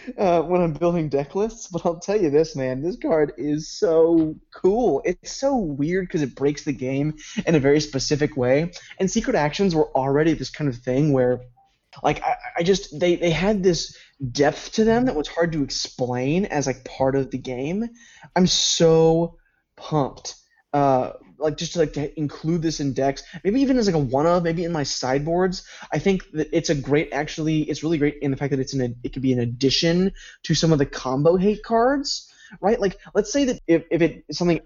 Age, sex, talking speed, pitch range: 20-39, male, 215 wpm, 140-180 Hz